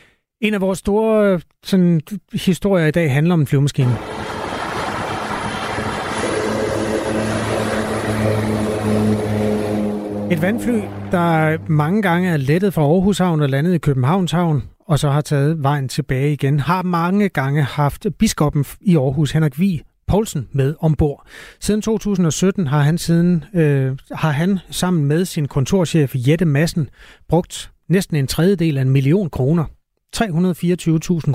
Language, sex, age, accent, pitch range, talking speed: Danish, male, 30-49, native, 135-175 Hz, 130 wpm